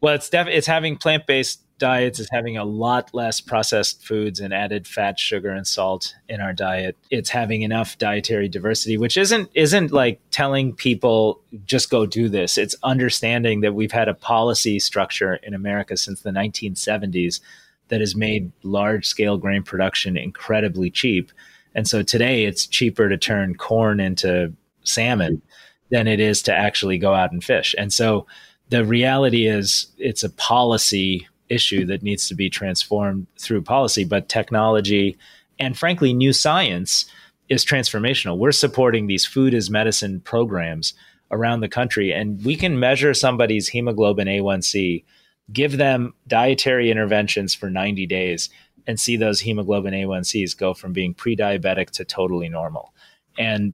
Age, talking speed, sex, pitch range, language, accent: 30-49, 155 wpm, male, 95-120 Hz, English, American